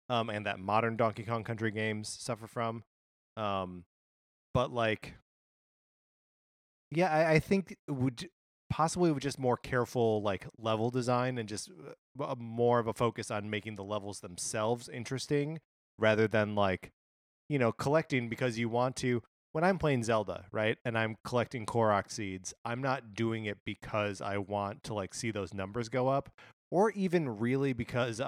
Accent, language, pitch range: American, English, 100-120 Hz